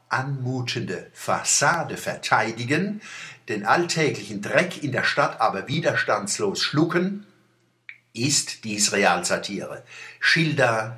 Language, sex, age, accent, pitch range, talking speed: German, male, 60-79, German, 120-165 Hz, 85 wpm